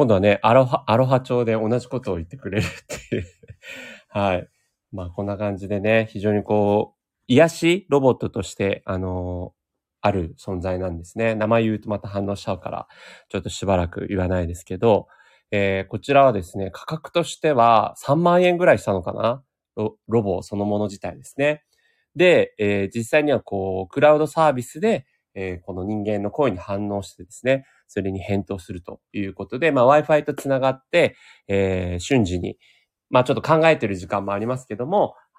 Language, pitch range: Japanese, 95-130 Hz